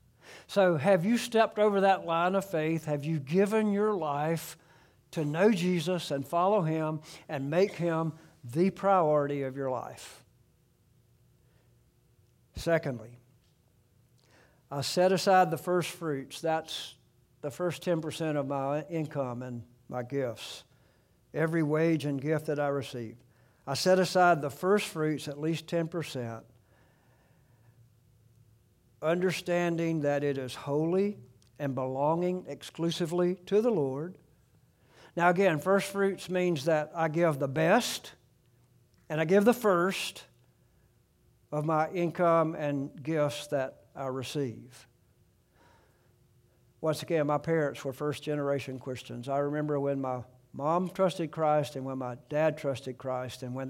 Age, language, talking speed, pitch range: 60-79, English, 130 wpm, 125-170 Hz